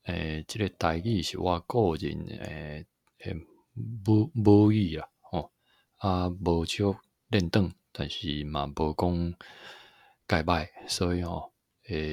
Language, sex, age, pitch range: Chinese, male, 20-39, 80-100 Hz